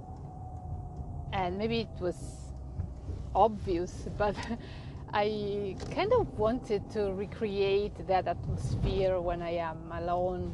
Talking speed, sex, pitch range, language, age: 100 wpm, female, 130-210 Hz, English, 30-49